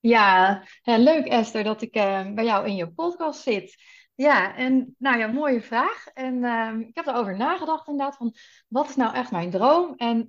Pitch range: 210-255 Hz